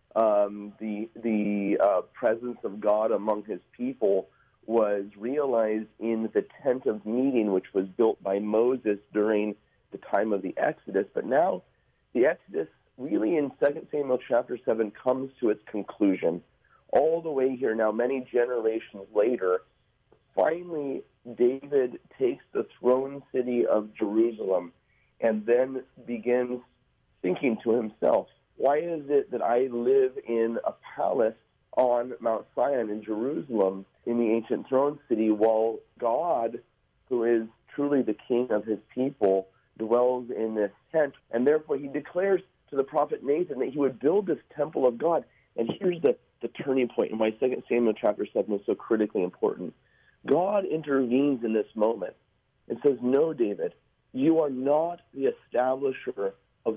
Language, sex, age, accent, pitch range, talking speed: English, male, 40-59, American, 110-140 Hz, 150 wpm